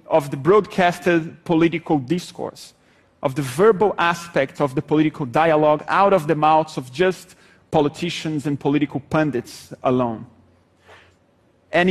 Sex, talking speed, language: male, 125 wpm, English